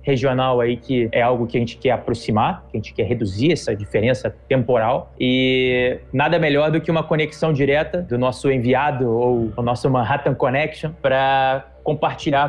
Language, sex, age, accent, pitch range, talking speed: Portuguese, male, 20-39, Brazilian, 140-175 Hz, 175 wpm